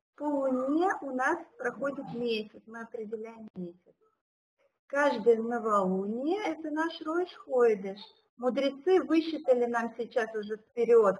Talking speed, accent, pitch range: 105 wpm, native, 230-355 Hz